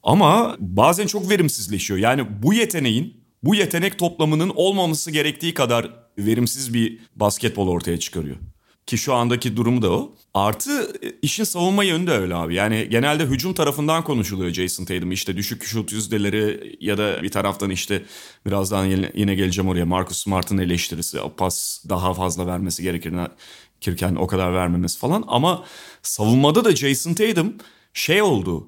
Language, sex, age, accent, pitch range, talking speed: Turkish, male, 30-49, native, 100-150 Hz, 145 wpm